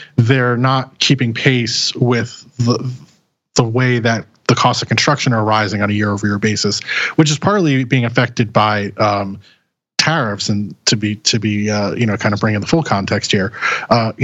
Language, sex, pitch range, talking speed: English, male, 110-135 Hz, 190 wpm